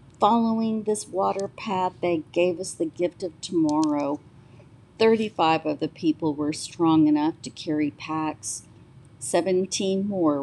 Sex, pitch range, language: female, 150-205 Hz, English